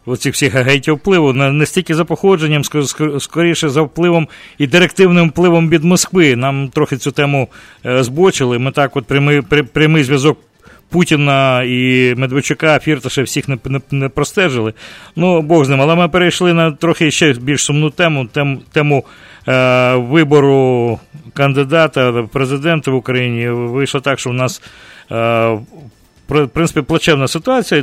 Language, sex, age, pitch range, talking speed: English, male, 40-59, 125-155 Hz, 140 wpm